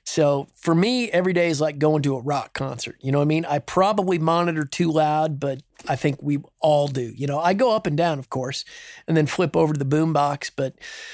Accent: American